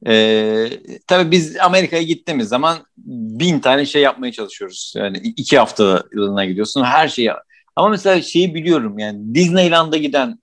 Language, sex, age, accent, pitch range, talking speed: Turkish, male, 50-69, native, 115-165 Hz, 145 wpm